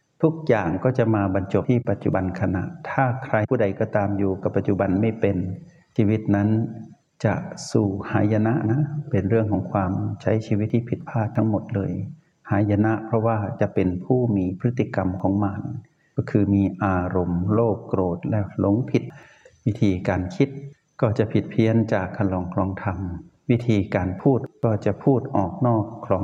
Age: 60-79